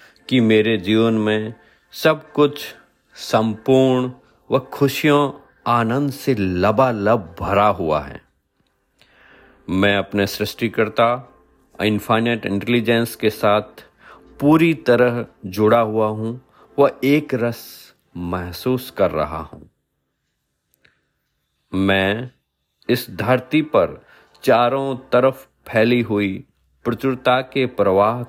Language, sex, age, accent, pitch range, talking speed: Hindi, male, 50-69, native, 105-135 Hz, 95 wpm